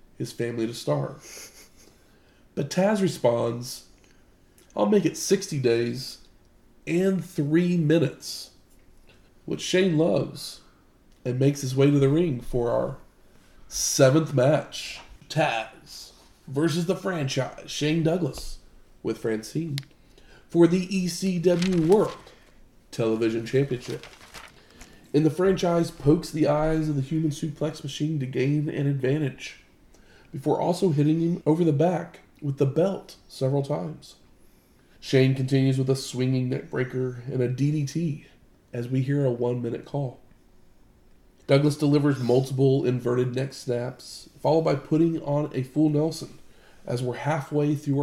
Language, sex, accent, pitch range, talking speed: English, male, American, 125-160 Hz, 125 wpm